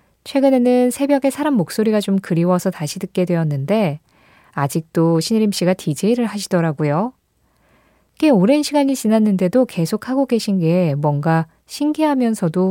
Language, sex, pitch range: Korean, female, 165-245 Hz